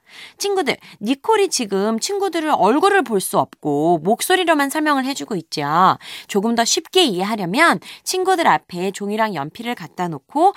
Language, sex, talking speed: English, female, 120 wpm